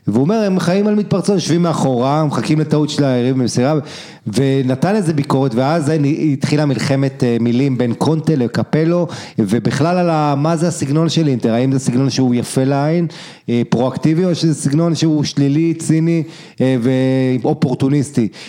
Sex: male